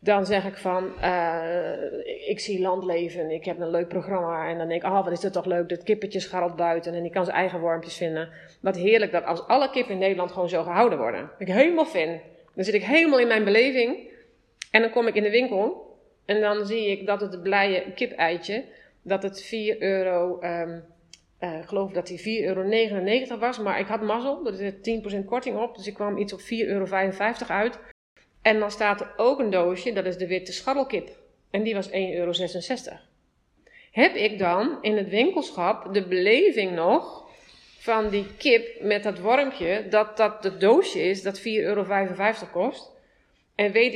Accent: Dutch